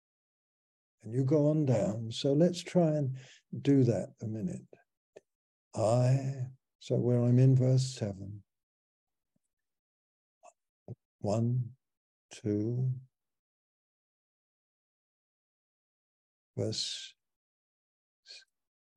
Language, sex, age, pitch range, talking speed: English, male, 60-79, 105-130 Hz, 70 wpm